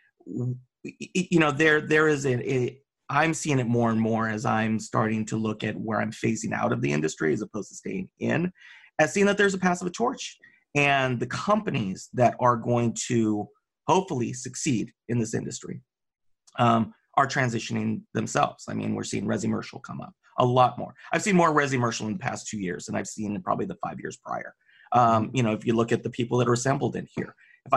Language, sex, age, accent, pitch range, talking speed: English, male, 30-49, American, 115-145 Hz, 210 wpm